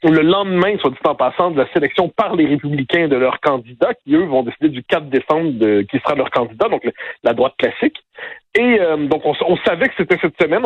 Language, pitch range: French, 145-190 Hz